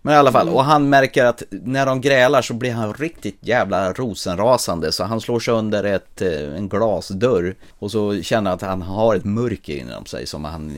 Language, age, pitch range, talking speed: Swedish, 30-49, 85-115 Hz, 205 wpm